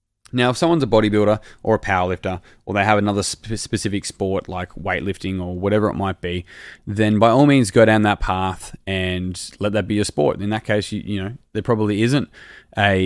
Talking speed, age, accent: 210 wpm, 20-39, Australian